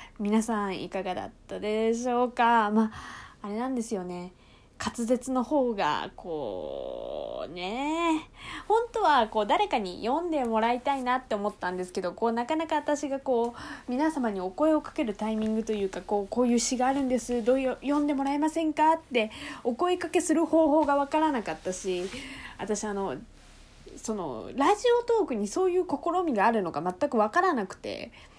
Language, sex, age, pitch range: Japanese, female, 20-39, 210-320 Hz